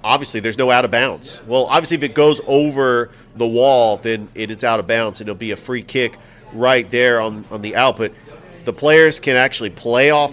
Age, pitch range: 40-59, 120-155 Hz